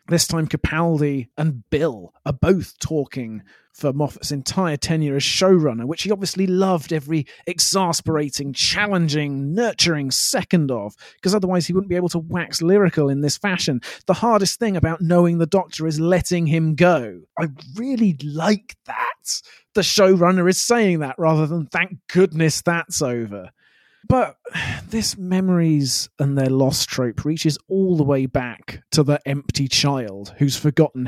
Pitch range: 140-185 Hz